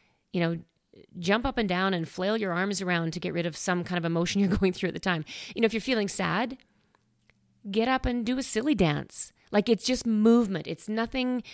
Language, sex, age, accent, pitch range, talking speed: English, female, 40-59, American, 175-215 Hz, 230 wpm